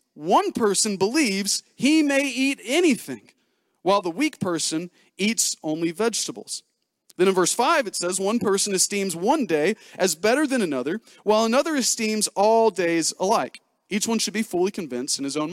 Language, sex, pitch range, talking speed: English, male, 210-290 Hz, 170 wpm